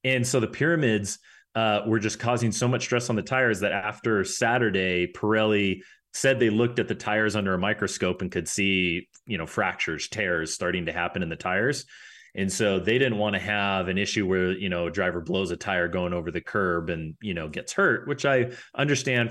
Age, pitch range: 30-49, 95-115 Hz